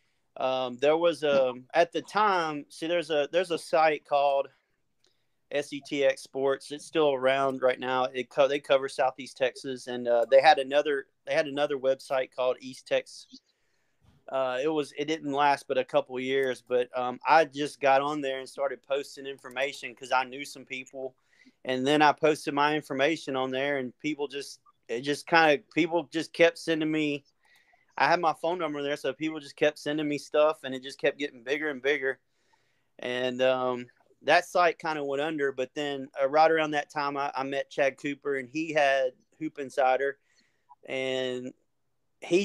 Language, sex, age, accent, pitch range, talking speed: English, male, 30-49, American, 130-155 Hz, 190 wpm